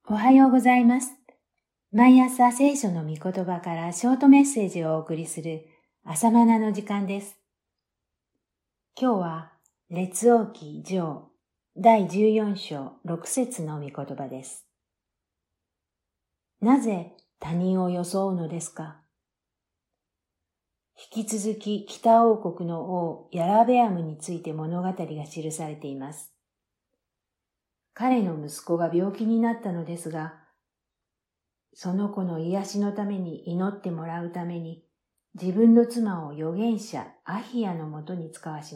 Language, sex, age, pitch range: Japanese, female, 50-69, 160-215 Hz